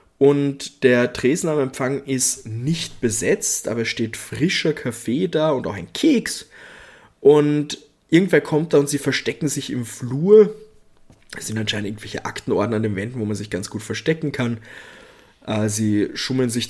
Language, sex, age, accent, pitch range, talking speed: German, male, 20-39, German, 110-145 Hz, 165 wpm